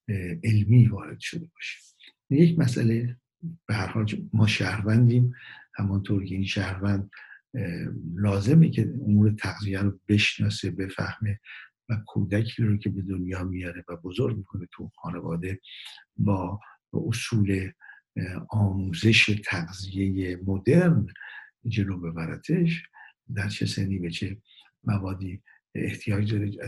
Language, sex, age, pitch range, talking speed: Persian, male, 60-79, 95-115 Hz, 110 wpm